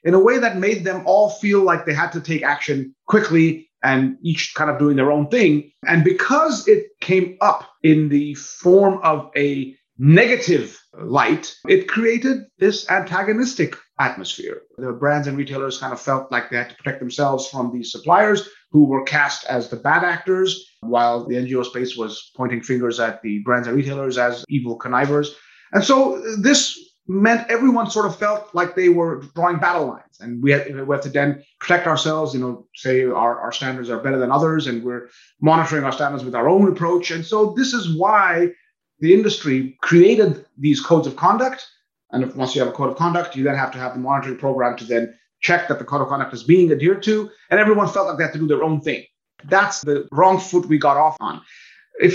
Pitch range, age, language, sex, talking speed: 135-190 Hz, 30-49, English, male, 205 wpm